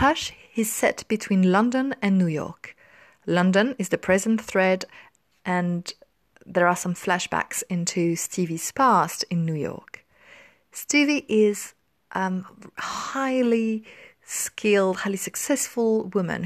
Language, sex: English, female